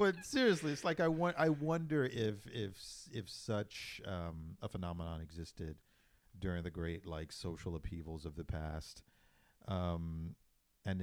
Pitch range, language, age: 85-105 Hz, English, 50-69